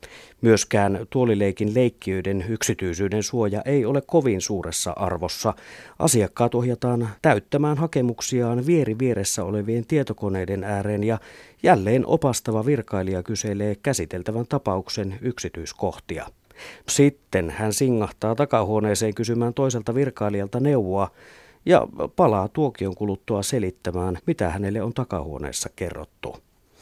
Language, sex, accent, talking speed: Finnish, male, native, 100 wpm